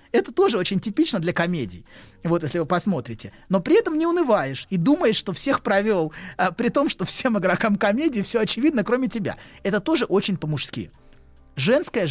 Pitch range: 155-225 Hz